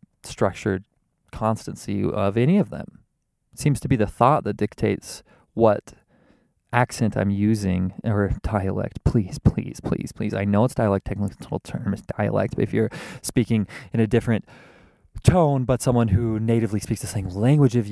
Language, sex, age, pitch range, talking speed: English, male, 20-39, 95-115 Hz, 160 wpm